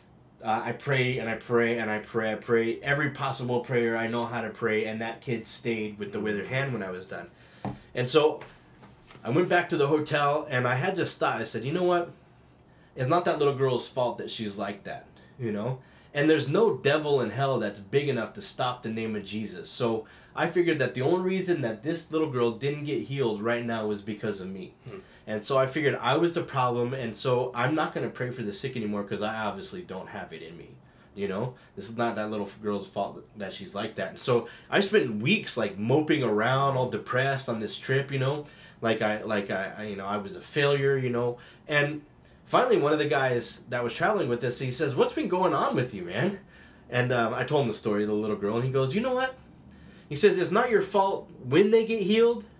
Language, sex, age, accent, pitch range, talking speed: English, male, 20-39, American, 110-150 Hz, 240 wpm